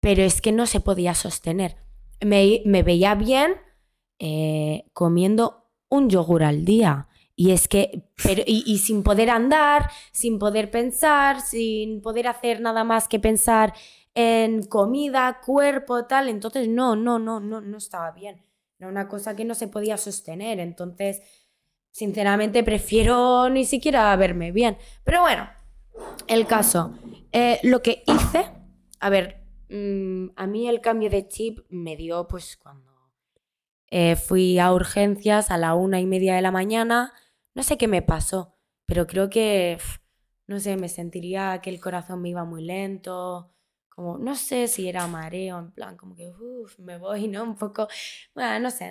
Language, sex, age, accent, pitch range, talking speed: Spanish, female, 20-39, Spanish, 185-230 Hz, 160 wpm